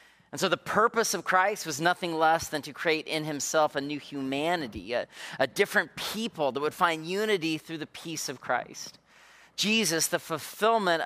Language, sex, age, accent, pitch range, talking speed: English, male, 30-49, American, 140-180 Hz, 180 wpm